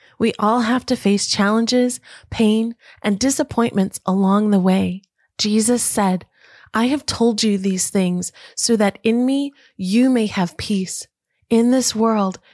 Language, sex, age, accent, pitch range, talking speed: English, female, 30-49, American, 195-245 Hz, 150 wpm